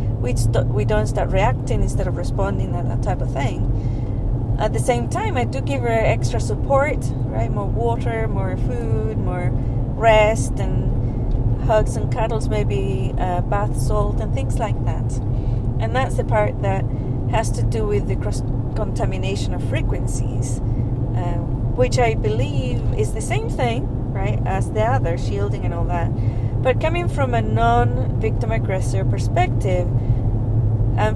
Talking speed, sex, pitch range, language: 155 wpm, female, 110-120 Hz, English